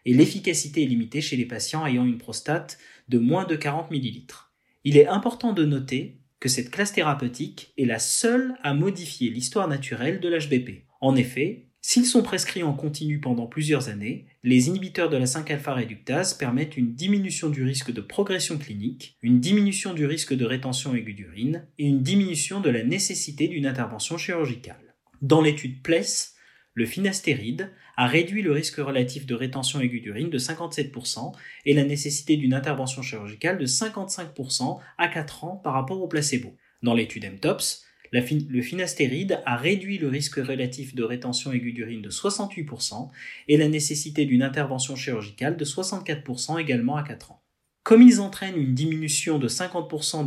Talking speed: 165 wpm